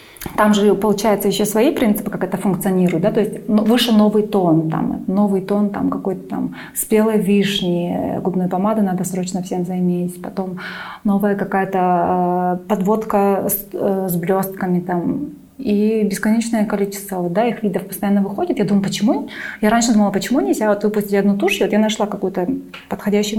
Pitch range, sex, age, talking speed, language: 195-240 Hz, female, 20-39, 170 wpm, Russian